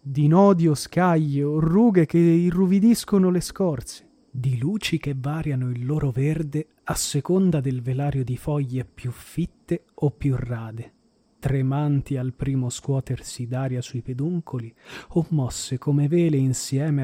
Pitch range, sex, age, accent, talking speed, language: 125-150 Hz, male, 30-49, native, 140 wpm, Italian